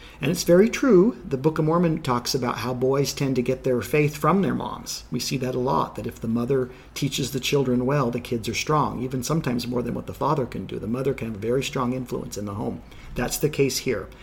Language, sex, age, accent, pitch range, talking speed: English, male, 50-69, American, 125-160 Hz, 255 wpm